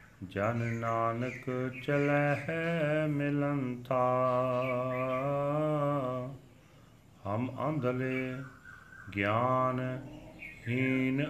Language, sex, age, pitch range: Punjabi, male, 40-59, 105-140 Hz